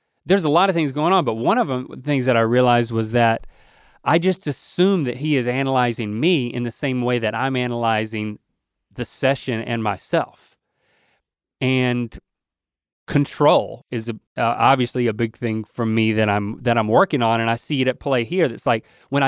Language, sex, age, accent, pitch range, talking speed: English, male, 30-49, American, 115-140 Hz, 195 wpm